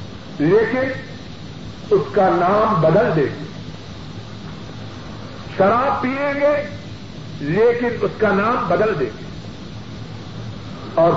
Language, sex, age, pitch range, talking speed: Urdu, male, 50-69, 180-260 Hz, 90 wpm